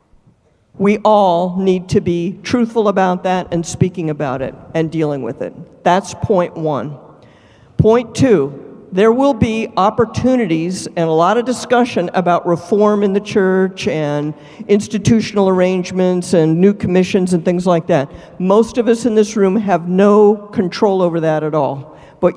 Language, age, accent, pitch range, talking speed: German, 50-69, American, 170-215 Hz, 160 wpm